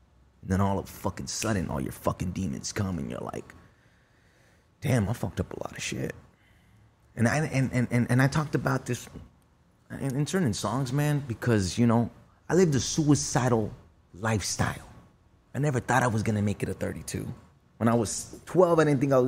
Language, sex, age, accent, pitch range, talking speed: English, male, 30-49, American, 100-135 Hz, 205 wpm